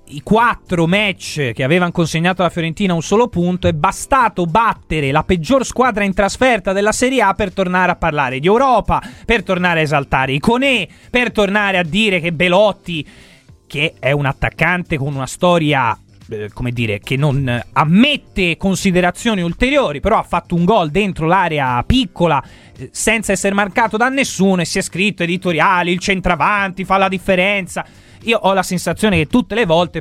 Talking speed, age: 170 wpm, 30-49